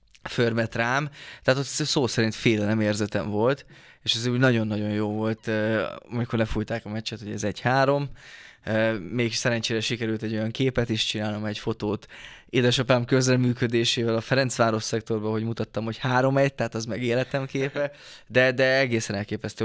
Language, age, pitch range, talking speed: Hungarian, 20-39, 110-125 Hz, 145 wpm